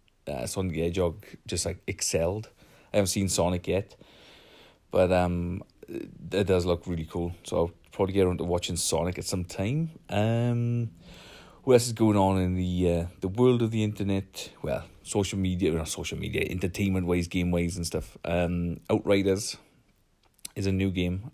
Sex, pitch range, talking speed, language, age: male, 85-95 Hz, 175 wpm, English, 30-49